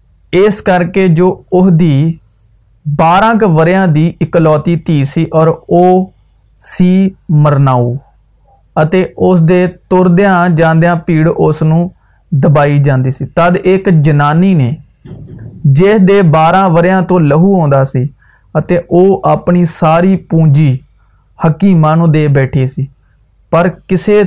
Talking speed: 100 wpm